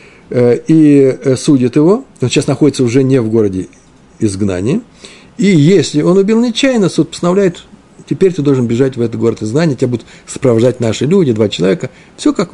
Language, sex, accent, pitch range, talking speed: Russian, male, native, 120-185 Hz, 165 wpm